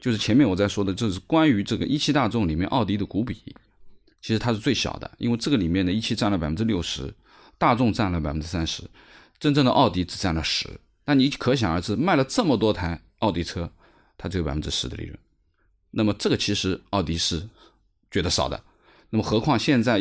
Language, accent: Chinese, native